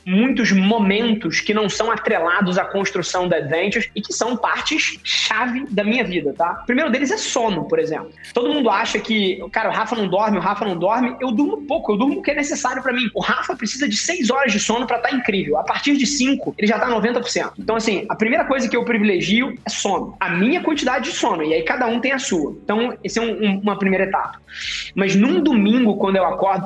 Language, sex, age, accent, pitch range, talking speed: Portuguese, male, 20-39, Brazilian, 185-230 Hz, 235 wpm